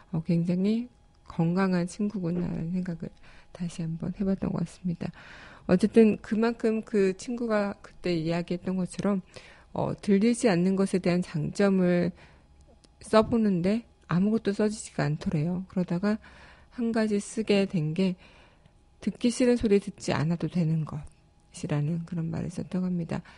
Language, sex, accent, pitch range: Korean, female, native, 170-200 Hz